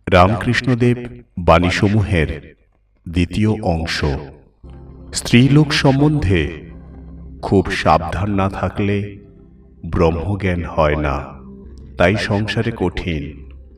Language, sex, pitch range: Bengali, male, 75-110 Hz